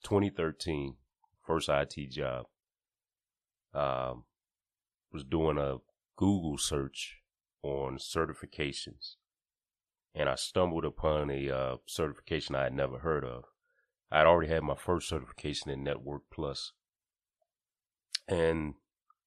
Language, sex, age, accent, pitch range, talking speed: English, male, 30-49, American, 70-80 Hz, 105 wpm